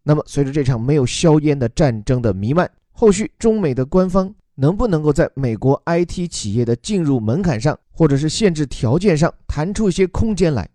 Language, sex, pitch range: Chinese, male, 115-165 Hz